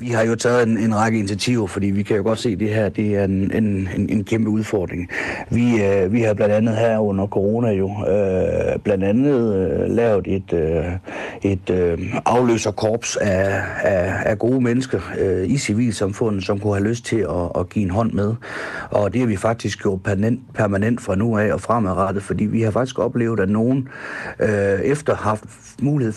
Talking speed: 200 wpm